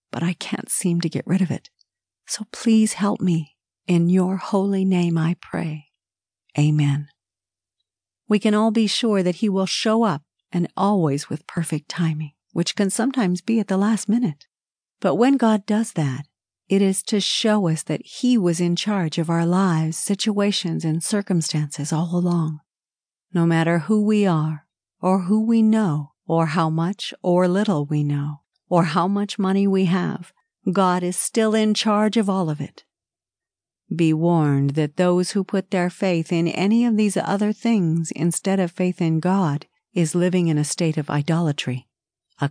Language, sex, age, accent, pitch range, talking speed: English, female, 50-69, American, 155-200 Hz, 175 wpm